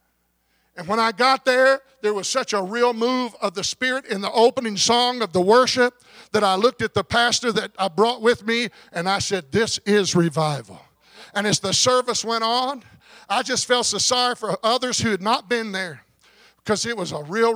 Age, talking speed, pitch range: 50-69, 210 wpm, 195-235 Hz